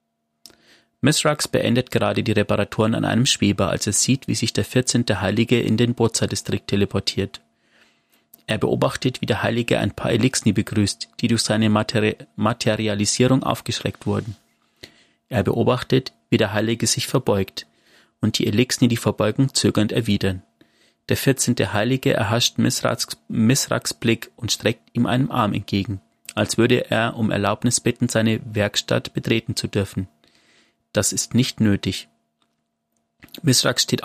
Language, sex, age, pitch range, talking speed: German, male, 30-49, 100-120 Hz, 140 wpm